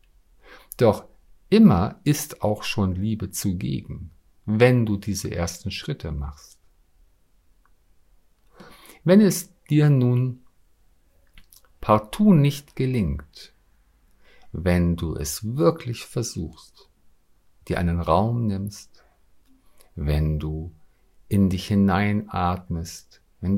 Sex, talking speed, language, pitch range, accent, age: male, 90 wpm, German, 85-120 Hz, German, 50-69